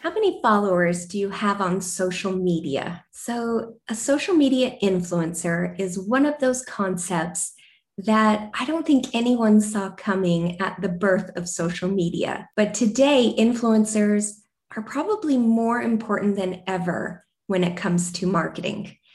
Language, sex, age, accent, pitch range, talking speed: English, female, 20-39, American, 185-235 Hz, 145 wpm